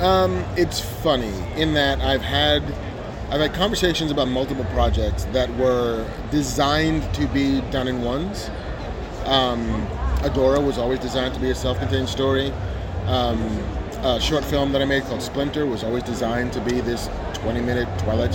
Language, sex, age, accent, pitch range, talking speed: English, male, 30-49, American, 100-135 Hz, 155 wpm